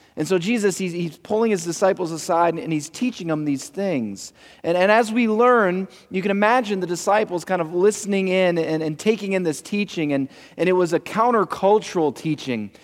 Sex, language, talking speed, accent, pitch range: male, English, 195 wpm, American, 155-205 Hz